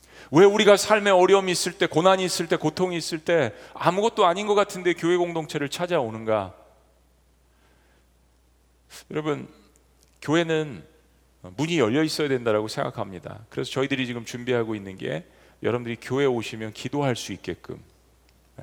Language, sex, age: Korean, male, 40-59